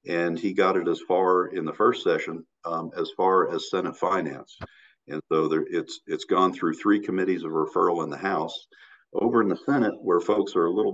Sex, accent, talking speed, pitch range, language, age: male, American, 215 wpm, 310-410 Hz, English, 50-69